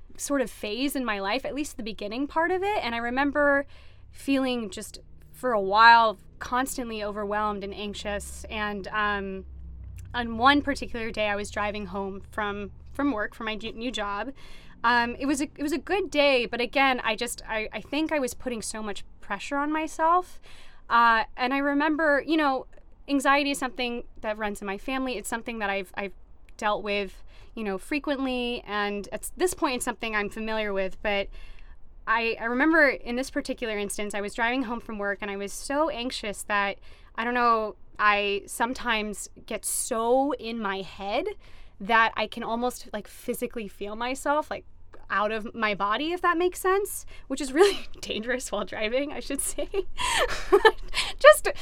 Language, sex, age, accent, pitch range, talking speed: English, female, 20-39, American, 210-280 Hz, 180 wpm